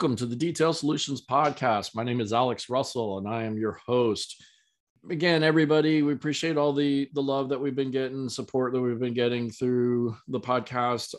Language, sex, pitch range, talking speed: English, male, 115-130 Hz, 195 wpm